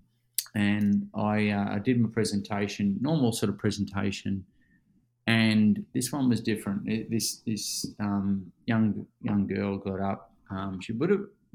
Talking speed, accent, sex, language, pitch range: 150 wpm, Australian, male, English, 100-120 Hz